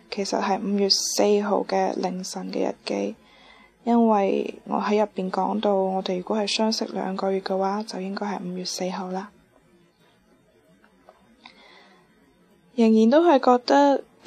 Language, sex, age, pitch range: Chinese, female, 20-39, 190-230 Hz